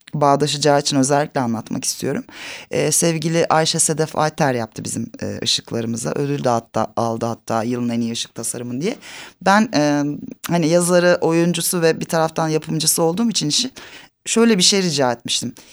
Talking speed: 160 wpm